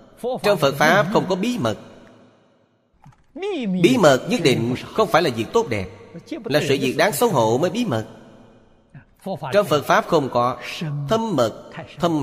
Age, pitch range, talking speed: 30-49, 120-165 Hz, 165 wpm